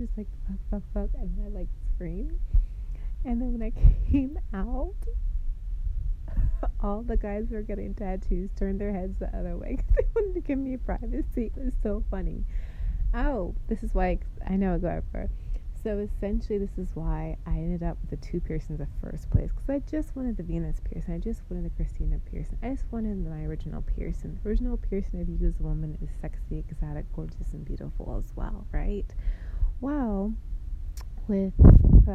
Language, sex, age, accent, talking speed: English, female, 30-49, American, 190 wpm